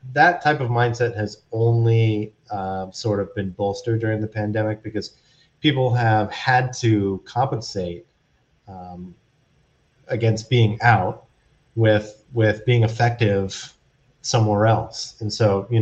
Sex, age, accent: male, 30-49, American